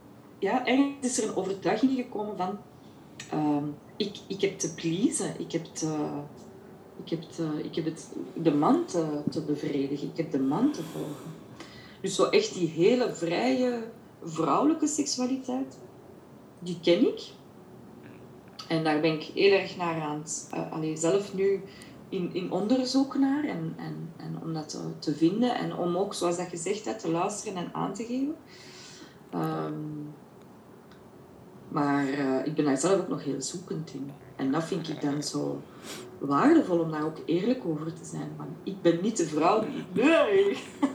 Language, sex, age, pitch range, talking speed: Dutch, female, 20-39, 155-245 Hz, 170 wpm